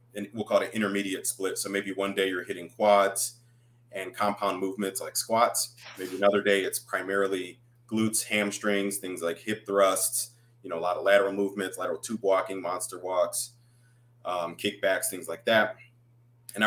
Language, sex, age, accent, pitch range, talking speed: English, male, 30-49, American, 95-120 Hz, 175 wpm